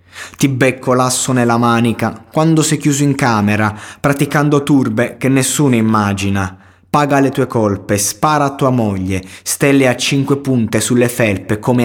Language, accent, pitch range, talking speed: Italian, native, 105-130 Hz, 150 wpm